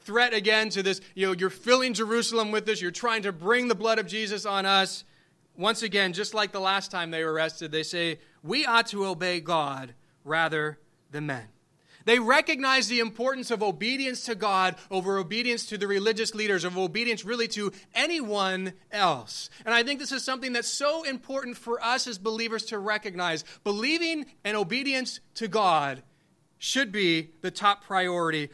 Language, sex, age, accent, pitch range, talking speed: English, male, 30-49, American, 185-235 Hz, 180 wpm